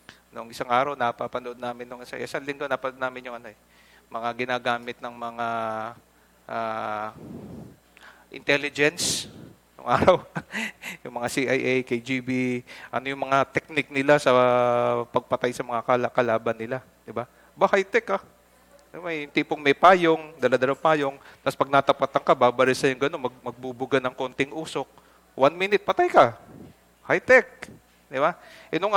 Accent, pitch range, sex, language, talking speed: Filipino, 125-195 Hz, male, English, 145 wpm